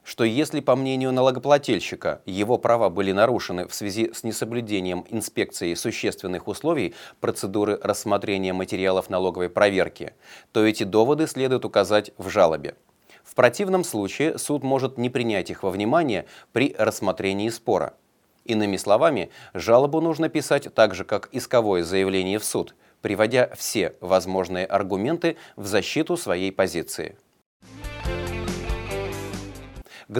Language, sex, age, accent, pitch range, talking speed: Russian, male, 30-49, native, 100-130 Hz, 125 wpm